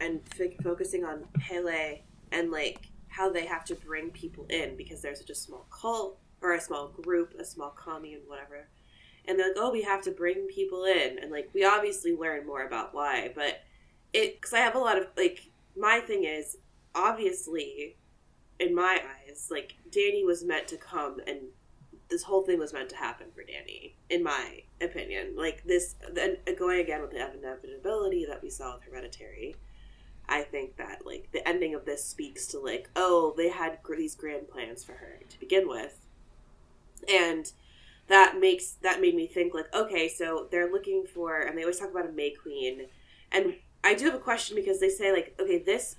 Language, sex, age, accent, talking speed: English, female, 20-39, American, 195 wpm